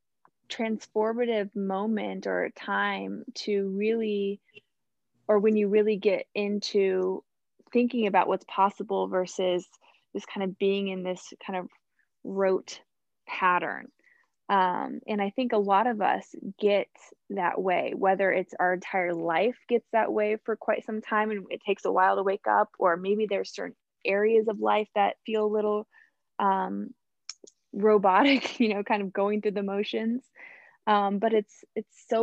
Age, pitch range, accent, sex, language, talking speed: 20-39, 190-220 Hz, American, female, English, 155 wpm